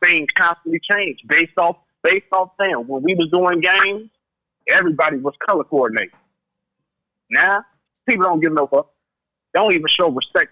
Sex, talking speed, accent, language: male, 160 wpm, American, English